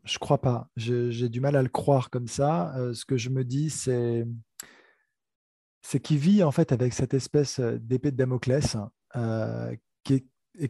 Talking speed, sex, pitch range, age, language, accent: 195 wpm, male, 125-150 Hz, 20-39, French, French